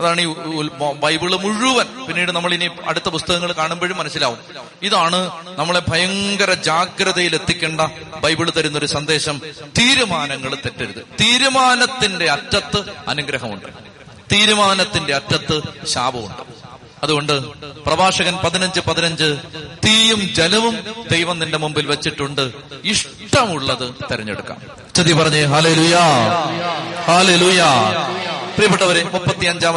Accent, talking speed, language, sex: native, 75 wpm, Malayalam, male